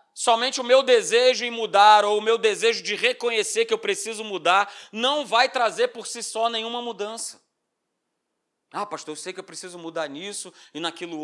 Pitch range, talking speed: 205-275 Hz, 185 wpm